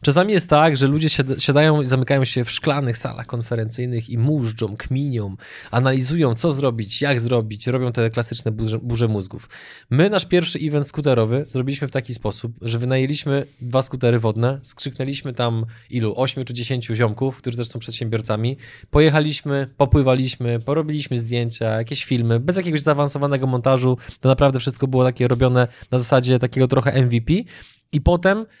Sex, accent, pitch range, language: male, native, 120-145 Hz, Polish